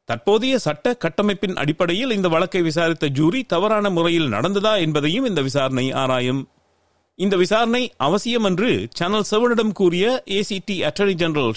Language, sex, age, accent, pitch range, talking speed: Tamil, male, 40-59, native, 125-195 Hz, 140 wpm